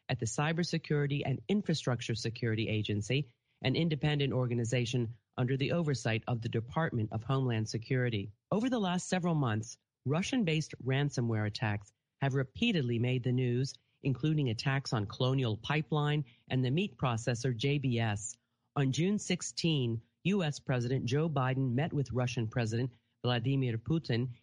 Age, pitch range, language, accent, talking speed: 40-59, 120-150 Hz, English, American, 140 wpm